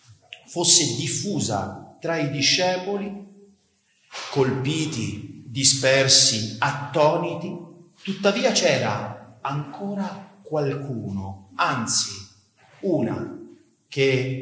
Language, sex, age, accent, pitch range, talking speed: Italian, male, 40-59, native, 125-170 Hz, 60 wpm